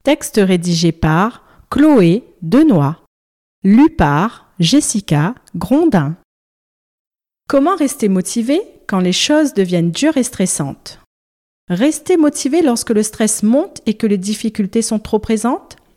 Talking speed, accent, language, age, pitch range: 120 wpm, French, French, 40-59, 165-245 Hz